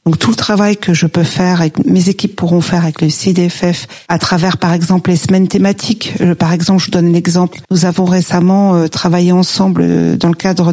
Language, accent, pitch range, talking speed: French, French, 170-190 Hz, 205 wpm